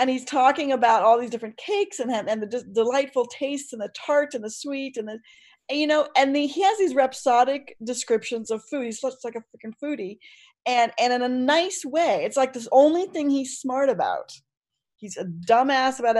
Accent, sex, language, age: American, female, English, 40-59